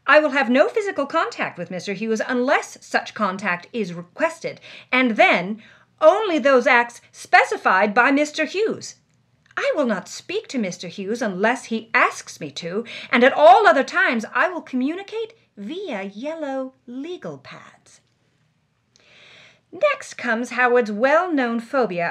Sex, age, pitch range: female, 40-59, 180-265 Hz